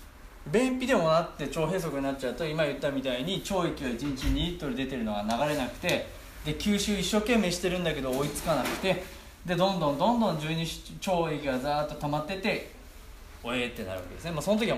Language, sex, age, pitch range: Japanese, male, 20-39, 120-195 Hz